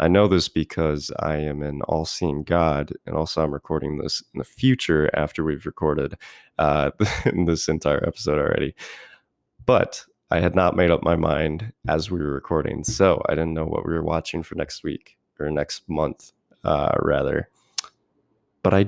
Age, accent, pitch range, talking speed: 20-39, American, 80-95 Hz, 175 wpm